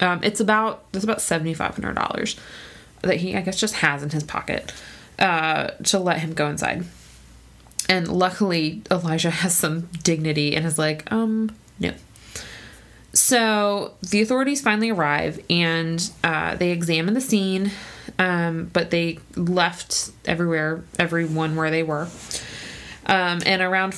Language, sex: English, female